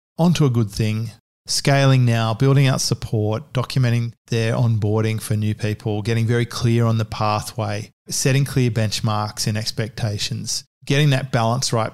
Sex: male